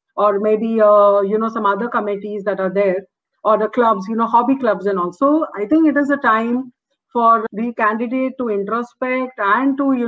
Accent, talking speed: Indian, 200 wpm